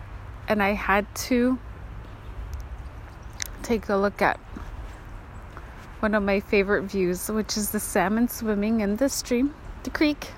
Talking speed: 135 wpm